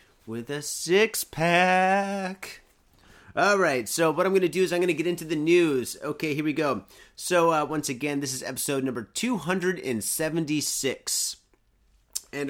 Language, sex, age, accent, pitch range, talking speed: English, male, 30-49, American, 140-190 Hz, 160 wpm